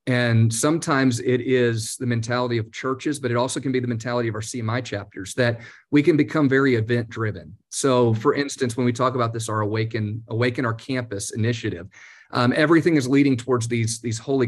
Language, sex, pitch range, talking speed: English, male, 115-130 Hz, 200 wpm